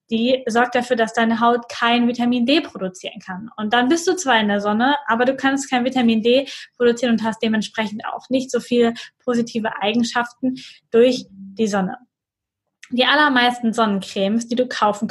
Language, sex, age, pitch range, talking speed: German, female, 10-29, 215-255 Hz, 175 wpm